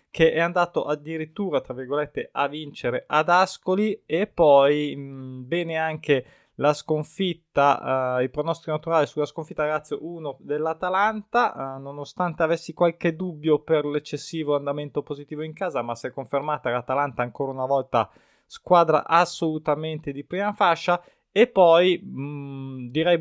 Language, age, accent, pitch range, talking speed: Italian, 20-39, native, 145-170 Hz, 140 wpm